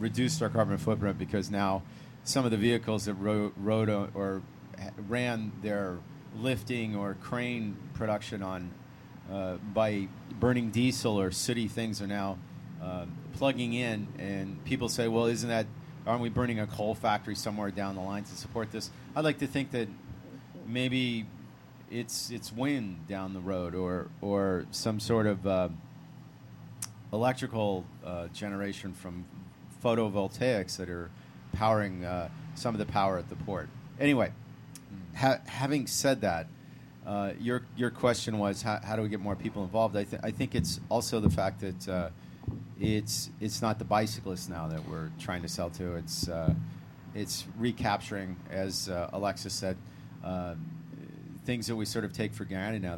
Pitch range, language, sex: 95-120 Hz, English, male